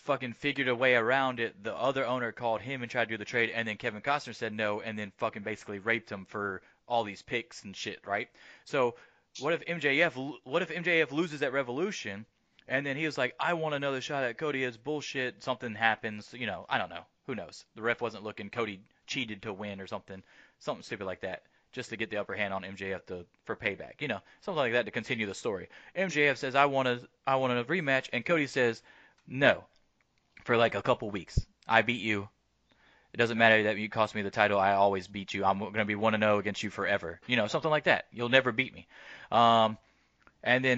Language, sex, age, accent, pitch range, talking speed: English, male, 30-49, American, 105-125 Hz, 230 wpm